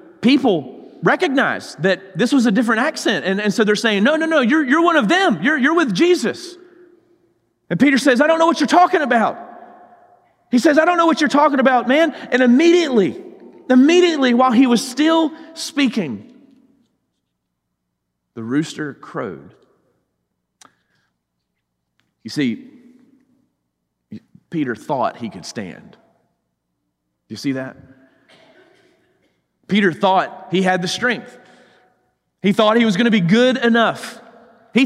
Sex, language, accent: male, English, American